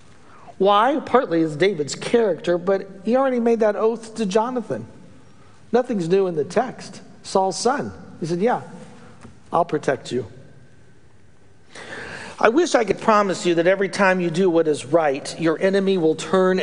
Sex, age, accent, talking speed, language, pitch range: male, 40-59, American, 160 wpm, English, 135-190 Hz